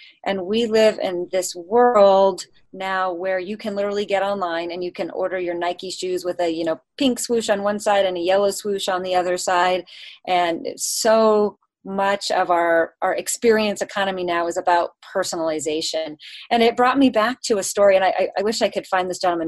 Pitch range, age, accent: 170-210 Hz, 30-49, American